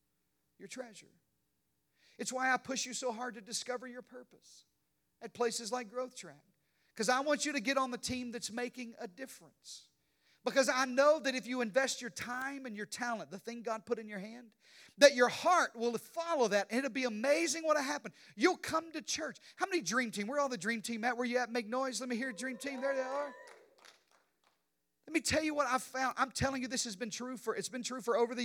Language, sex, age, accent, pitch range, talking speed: English, male, 40-59, American, 200-255 Hz, 235 wpm